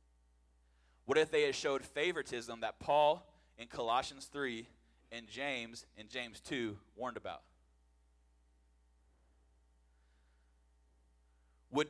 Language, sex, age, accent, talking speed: English, male, 20-39, American, 95 wpm